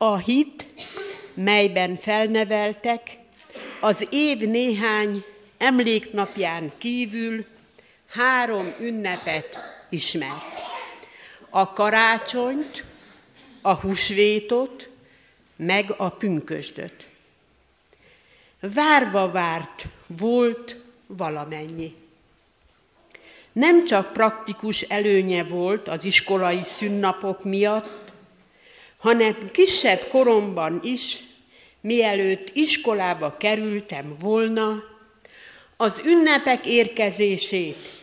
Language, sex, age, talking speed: Hungarian, female, 60-79, 70 wpm